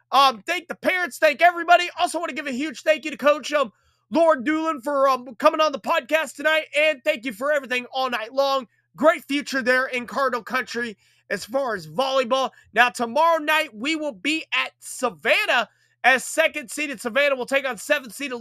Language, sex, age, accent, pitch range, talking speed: English, male, 30-49, American, 235-305 Hz, 200 wpm